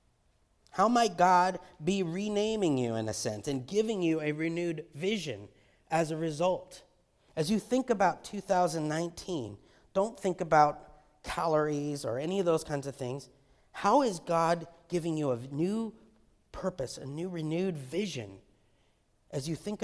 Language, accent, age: English, American, 30-49